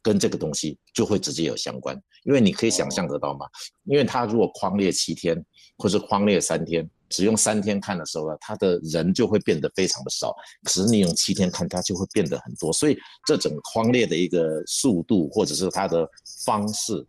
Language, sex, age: Chinese, male, 50-69